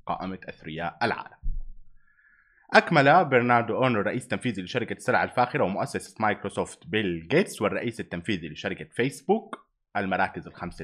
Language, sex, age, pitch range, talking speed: Arabic, male, 30-49, 95-140 Hz, 115 wpm